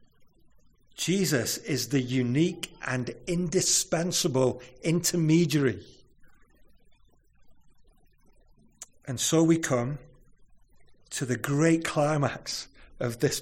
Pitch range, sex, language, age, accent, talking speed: 140-200 Hz, male, English, 50-69, British, 75 wpm